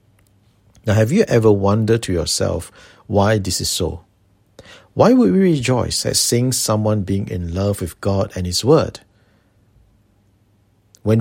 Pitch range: 100-115 Hz